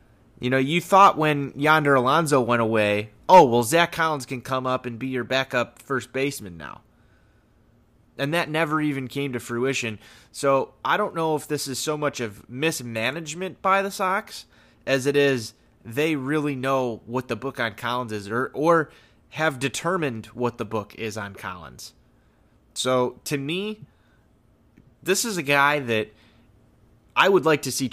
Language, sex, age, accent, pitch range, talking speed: English, male, 20-39, American, 115-145 Hz, 170 wpm